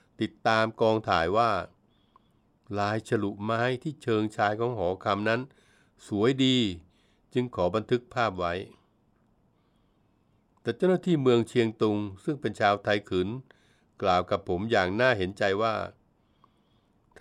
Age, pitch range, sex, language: 60-79, 100-125 Hz, male, Thai